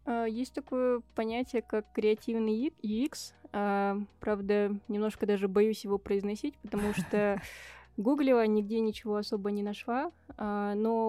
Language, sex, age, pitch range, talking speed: Russian, female, 20-39, 205-230 Hz, 115 wpm